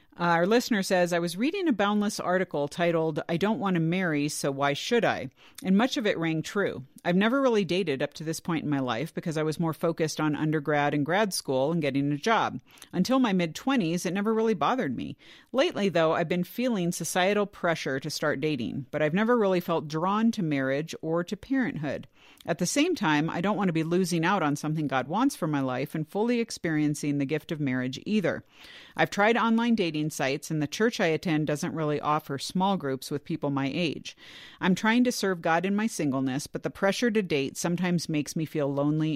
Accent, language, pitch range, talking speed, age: American, English, 145-190 Hz, 220 wpm, 50-69